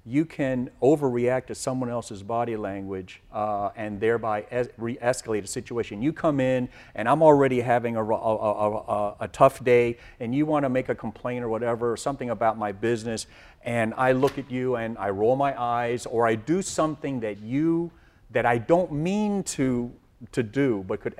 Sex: male